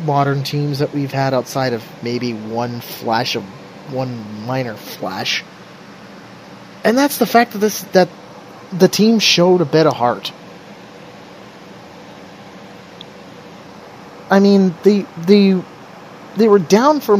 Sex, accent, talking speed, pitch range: male, American, 125 wpm, 120-175 Hz